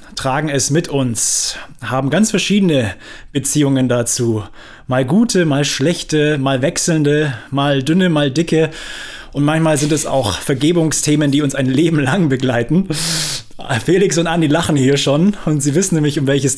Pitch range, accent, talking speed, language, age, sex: 130-165 Hz, German, 155 wpm, German, 20-39, male